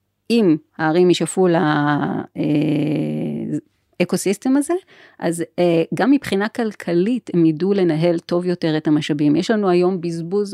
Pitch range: 160-215 Hz